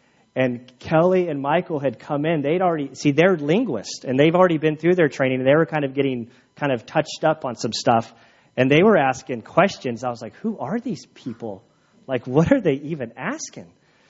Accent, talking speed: American, 215 wpm